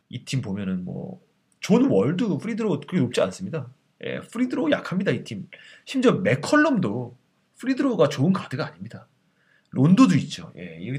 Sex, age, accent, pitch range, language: male, 30-49, native, 135-215 Hz, Korean